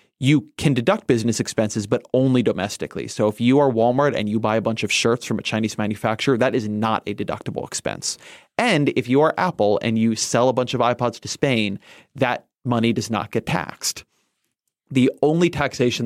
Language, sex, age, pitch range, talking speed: English, male, 30-49, 110-135 Hz, 200 wpm